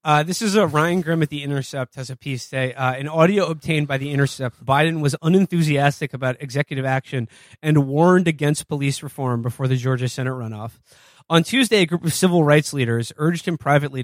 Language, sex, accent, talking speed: English, male, American, 200 wpm